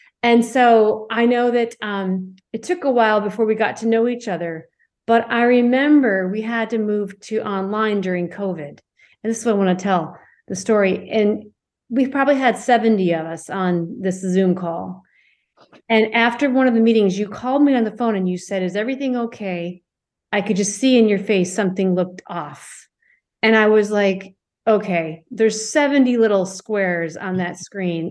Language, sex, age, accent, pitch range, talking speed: English, female, 40-59, American, 185-240 Hz, 190 wpm